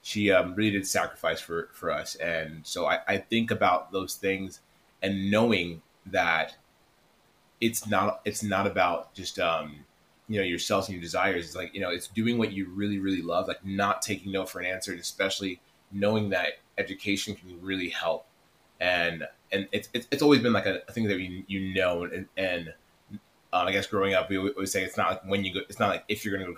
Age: 20-39